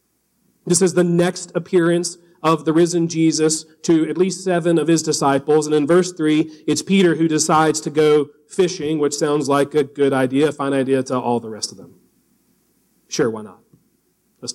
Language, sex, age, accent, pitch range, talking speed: English, male, 40-59, American, 155-200 Hz, 190 wpm